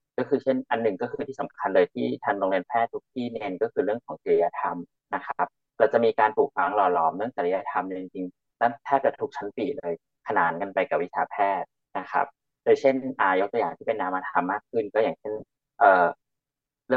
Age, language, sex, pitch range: 30-49, Thai, male, 105-140 Hz